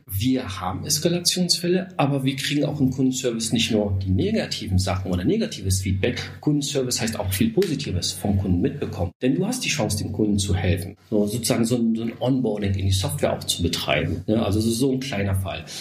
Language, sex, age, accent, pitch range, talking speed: German, male, 40-59, German, 100-135 Hz, 200 wpm